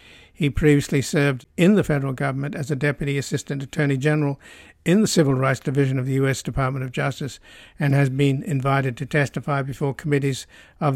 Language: English